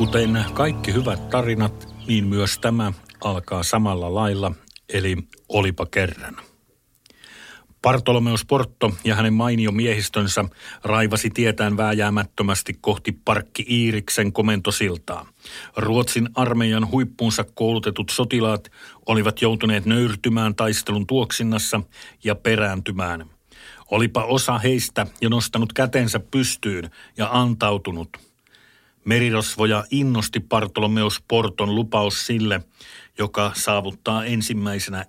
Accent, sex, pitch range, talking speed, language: native, male, 105-120 Hz, 95 wpm, Finnish